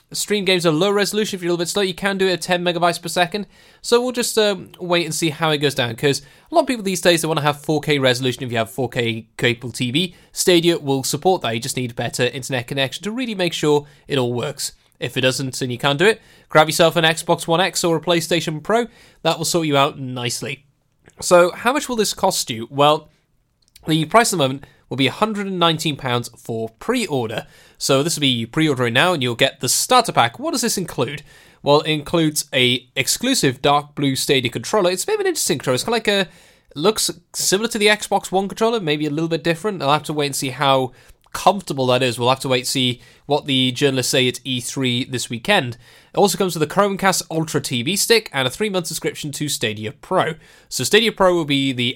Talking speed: 240 wpm